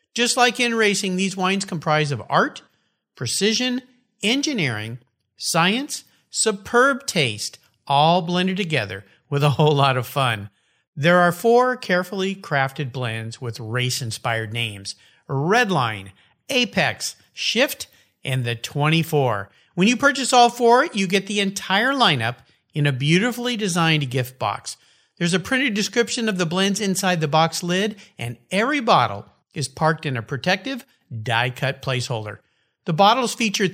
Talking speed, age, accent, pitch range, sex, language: 140 wpm, 50-69, American, 130-215 Hz, male, English